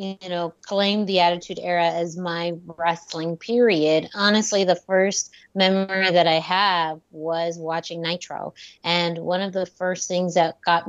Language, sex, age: English, female, 20-39